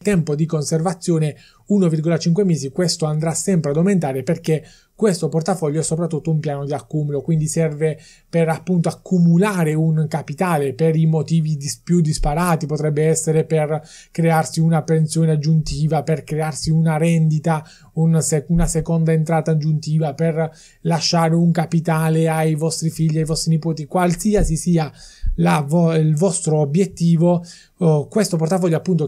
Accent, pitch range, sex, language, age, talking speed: native, 150-170 Hz, male, Italian, 20-39, 130 wpm